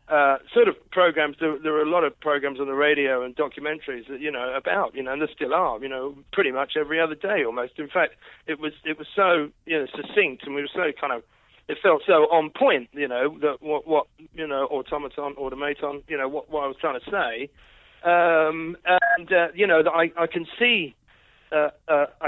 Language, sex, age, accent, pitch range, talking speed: English, male, 40-59, British, 150-195 Hz, 230 wpm